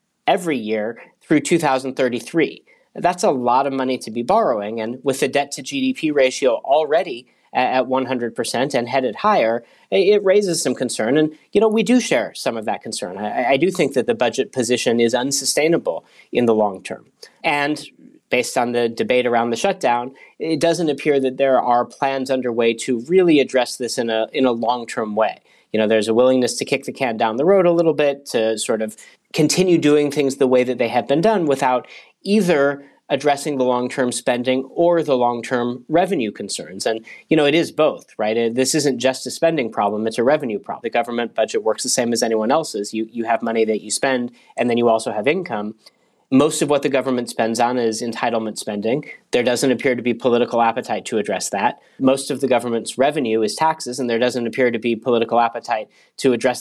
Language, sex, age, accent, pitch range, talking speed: English, male, 30-49, American, 120-150 Hz, 205 wpm